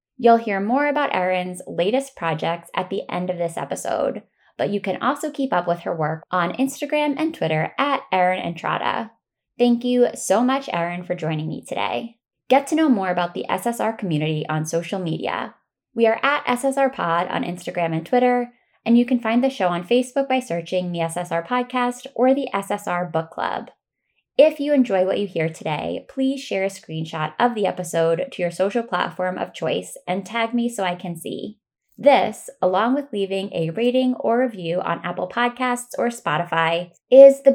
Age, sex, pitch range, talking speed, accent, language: 10-29, female, 175-255 Hz, 185 wpm, American, English